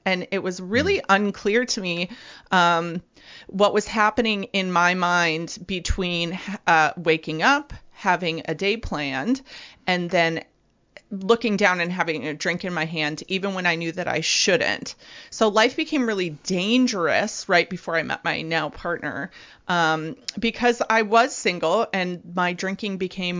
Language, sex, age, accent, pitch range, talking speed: English, female, 30-49, American, 175-240 Hz, 155 wpm